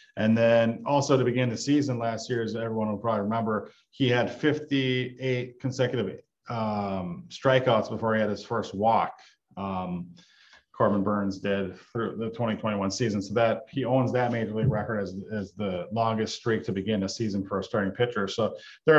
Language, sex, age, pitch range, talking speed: English, male, 40-59, 110-145 Hz, 180 wpm